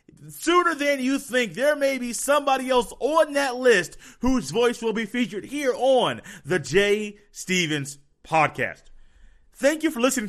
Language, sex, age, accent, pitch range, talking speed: English, male, 30-49, American, 165-230 Hz, 155 wpm